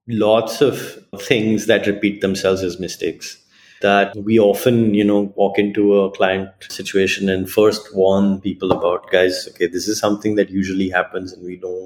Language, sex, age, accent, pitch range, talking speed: English, male, 30-49, Indian, 105-155 Hz, 170 wpm